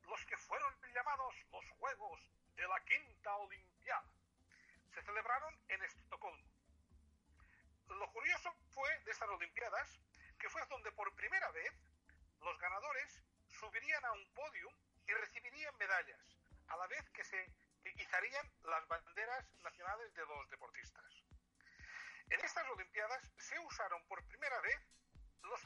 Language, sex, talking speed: Spanish, male, 130 wpm